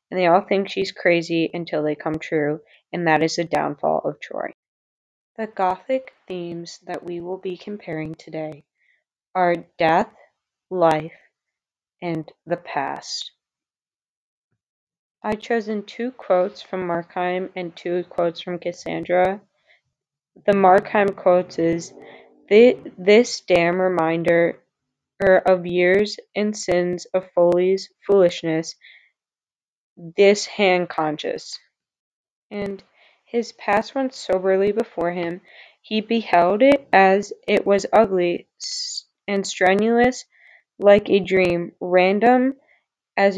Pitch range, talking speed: 175-215 Hz, 110 wpm